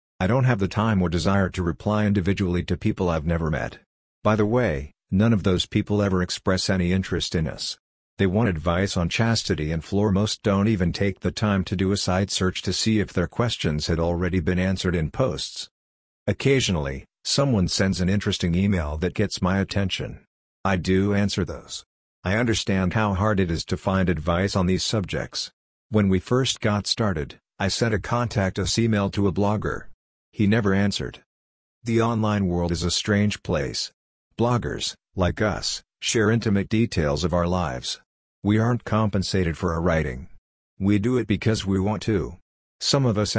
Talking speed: 185 wpm